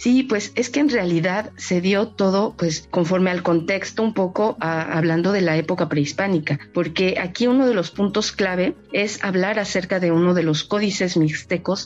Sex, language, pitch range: female, Spanish, 165-200 Hz